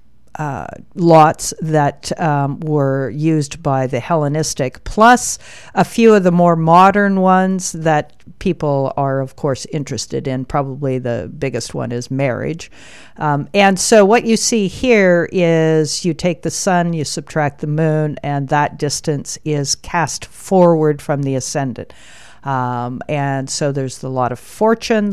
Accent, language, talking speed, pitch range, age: American, English, 155 wpm, 140-185 Hz, 50-69